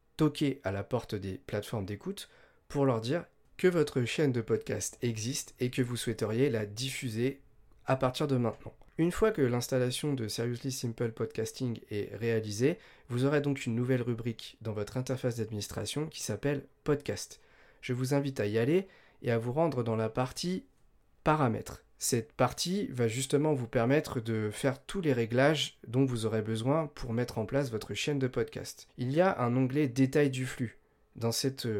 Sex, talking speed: male, 180 wpm